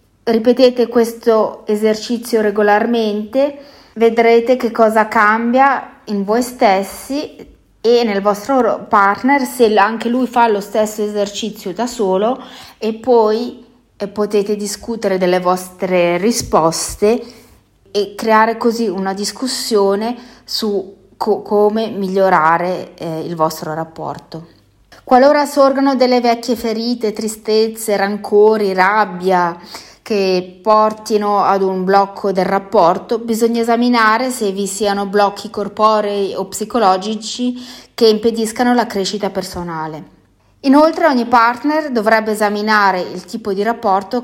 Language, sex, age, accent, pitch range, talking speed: Italian, female, 30-49, native, 195-235 Hz, 110 wpm